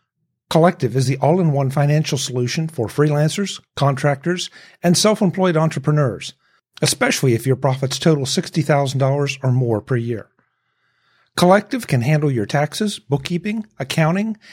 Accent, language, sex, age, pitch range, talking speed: American, English, male, 50-69, 130-170 Hz, 120 wpm